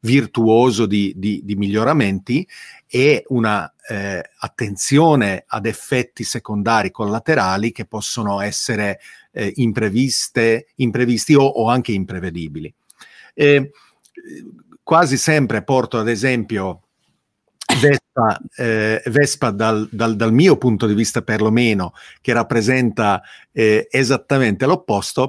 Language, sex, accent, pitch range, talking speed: Italian, male, native, 105-130 Hz, 105 wpm